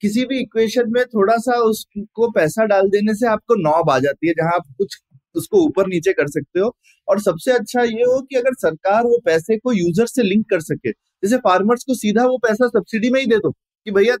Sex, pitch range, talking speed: male, 165-235 Hz, 230 wpm